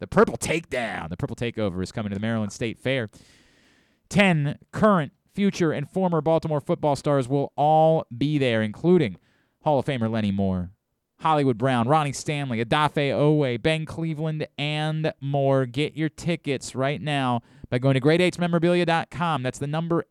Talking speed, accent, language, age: 160 wpm, American, English, 30-49